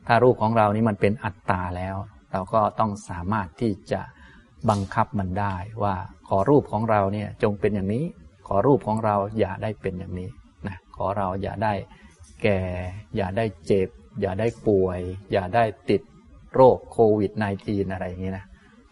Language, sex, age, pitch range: Thai, male, 20-39, 95-115 Hz